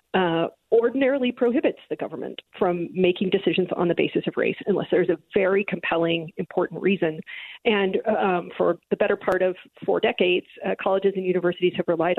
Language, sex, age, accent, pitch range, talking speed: English, female, 40-59, American, 175-215 Hz, 170 wpm